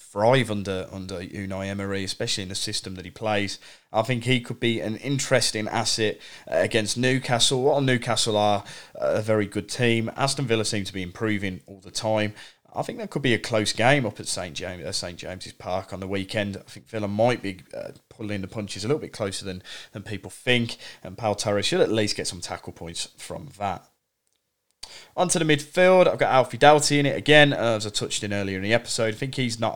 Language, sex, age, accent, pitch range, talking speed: English, male, 30-49, British, 100-125 Hz, 215 wpm